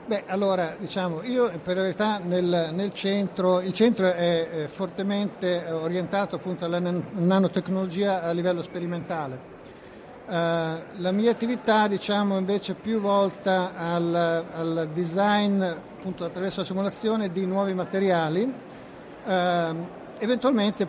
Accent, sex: native, male